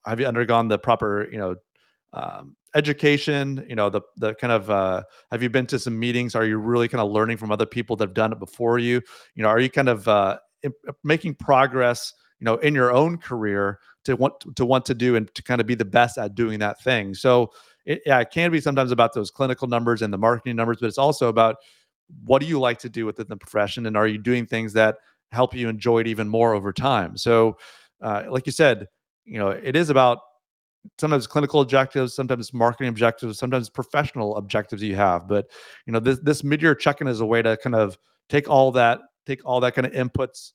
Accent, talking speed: American, 230 wpm